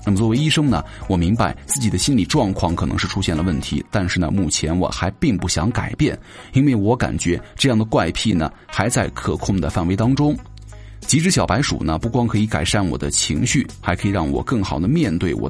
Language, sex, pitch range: Chinese, male, 90-115 Hz